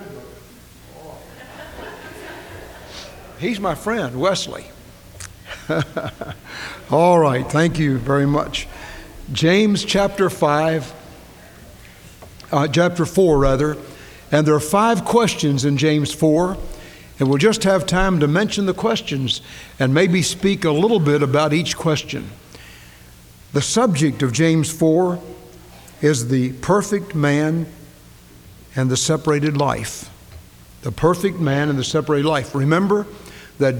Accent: American